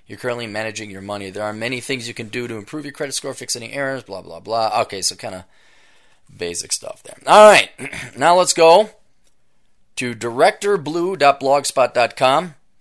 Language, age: English, 30-49